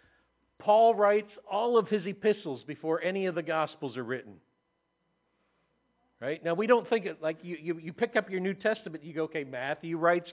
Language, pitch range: English, 160-195 Hz